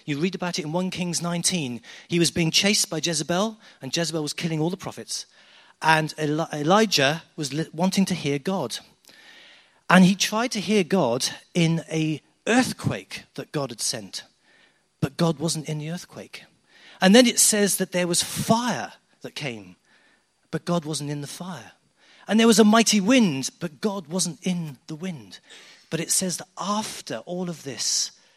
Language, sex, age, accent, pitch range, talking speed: English, male, 40-59, British, 140-190 Hz, 175 wpm